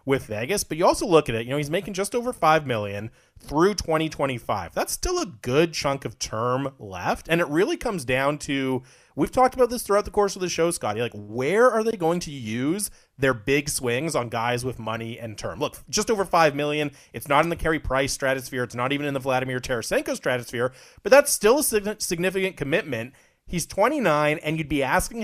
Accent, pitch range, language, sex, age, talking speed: American, 125-175 Hz, English, male, 30-49, 215 wpm